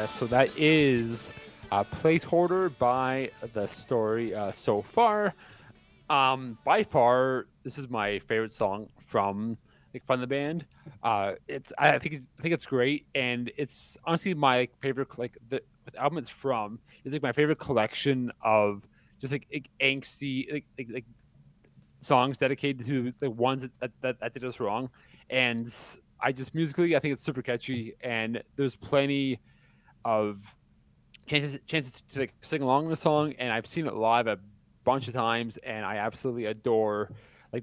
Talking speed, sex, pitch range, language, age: 165 wpm, male, 115-145 Hz, English, 30-49